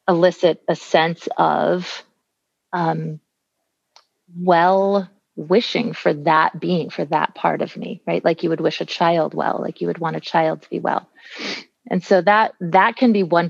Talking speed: 175 wpm